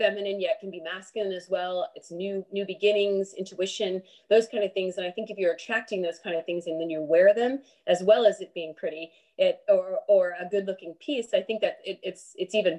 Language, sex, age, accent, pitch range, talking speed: English, female, 30-49, American, 175-225 Hz, 240 wpm